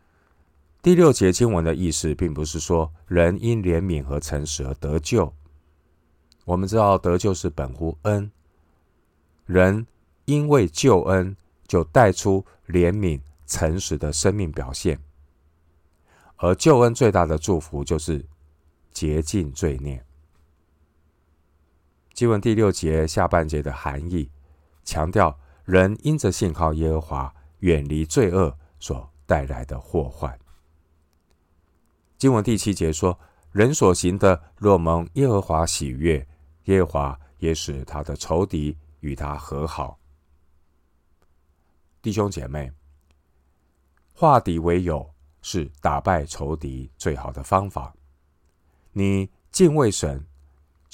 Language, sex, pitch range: Chinese, male, 75-90 Hz